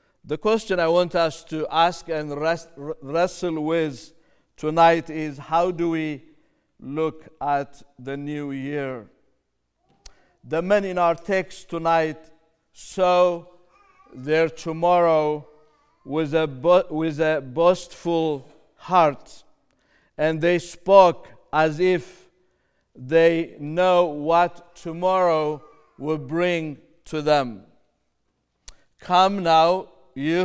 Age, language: 50-69, English